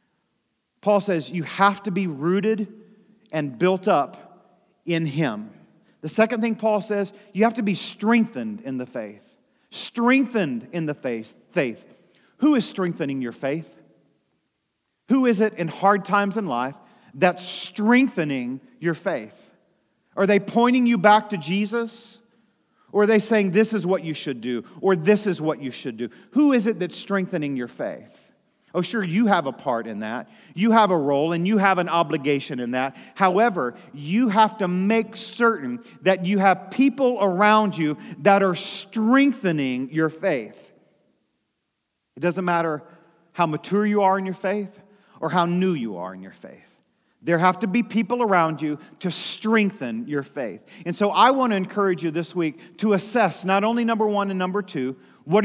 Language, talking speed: English, 175 wpm